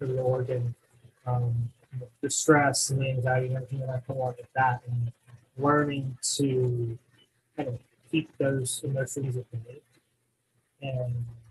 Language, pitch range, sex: English, 125-135 Hz, male